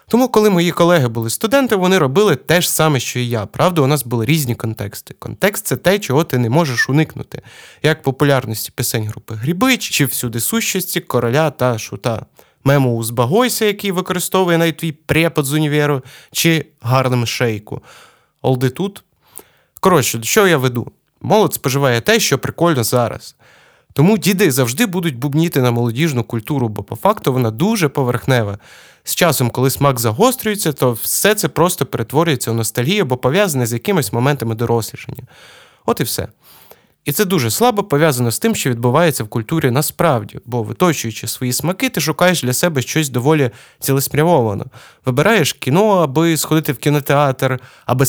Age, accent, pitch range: 20-39, native, 125-170 Hz